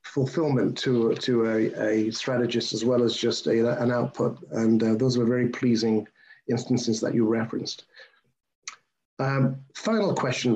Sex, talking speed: male, 150 wpm